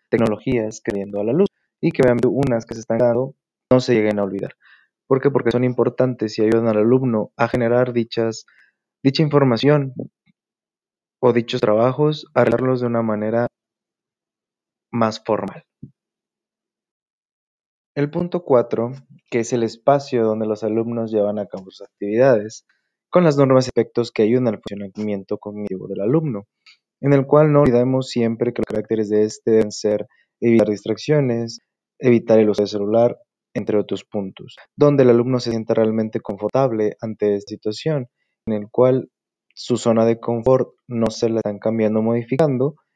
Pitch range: 105-130 Hz